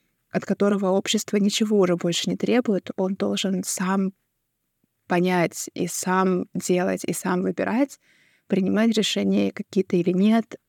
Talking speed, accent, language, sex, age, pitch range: 130 wpm, native, Russian, female, 20-39, 185-215 Hz